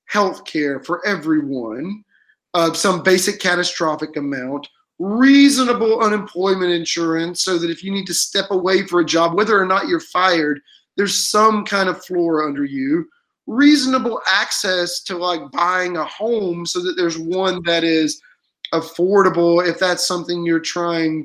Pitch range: 170-220 Hz